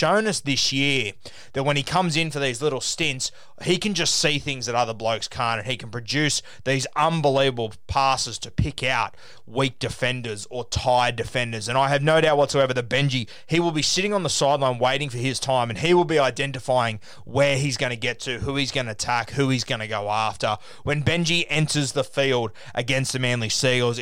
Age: 20-39